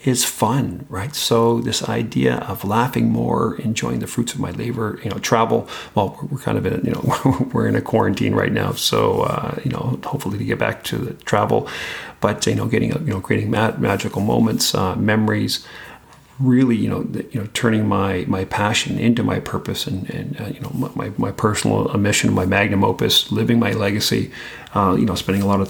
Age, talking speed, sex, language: 40-59, 210 wpm, male, English